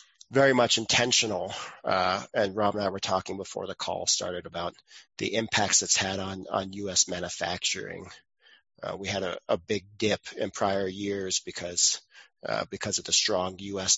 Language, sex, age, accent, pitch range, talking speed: English, male, 30-49, American, 95-115 Hz, 170 wpm